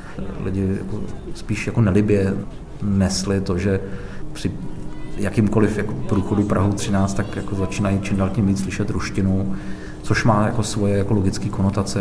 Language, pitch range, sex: Czech, 95-105 Hz, male